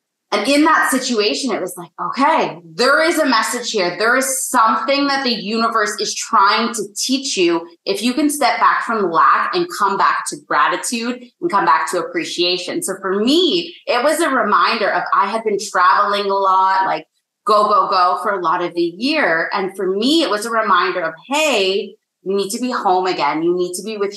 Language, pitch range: English, 185-300 Hz